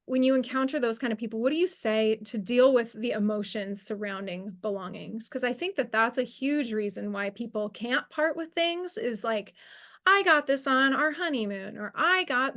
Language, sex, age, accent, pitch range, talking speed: English, female, 20-39, American, 220-275 Hz, 205 wpm